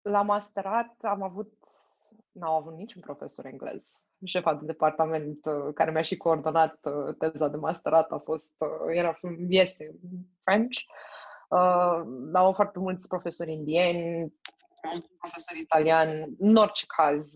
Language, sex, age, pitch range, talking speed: English, female, 20-39, 160-205 Hz, 135 wpm